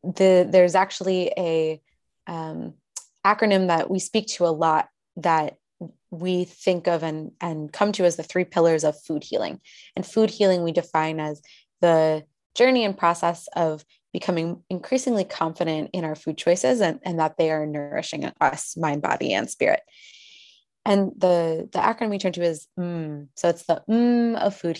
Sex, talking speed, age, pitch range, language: female, 170 wpm, 20-39, 160-195 Hz, English